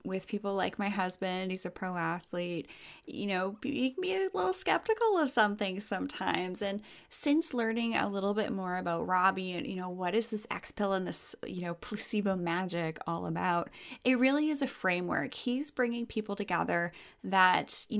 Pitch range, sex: 185-250 Hz, female